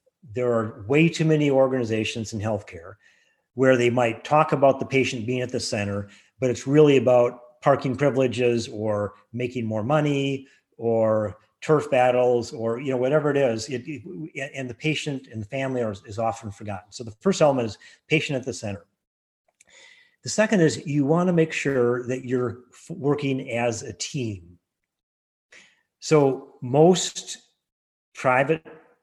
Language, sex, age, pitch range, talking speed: English, male, 30-49, 115-140 Hz, 155 wpm